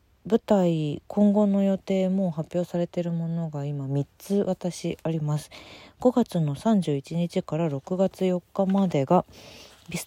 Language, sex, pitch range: Japanese, female, 140-200 Hz